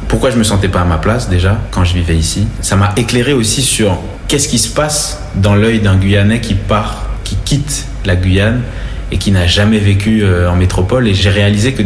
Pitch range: 90-110 Hz